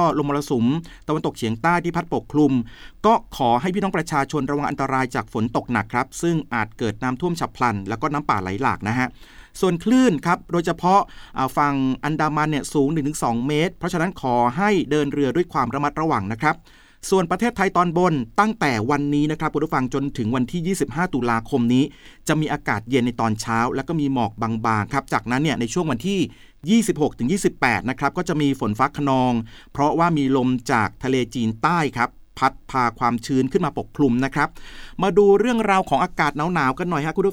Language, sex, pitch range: Thai, male, 130-175 Hz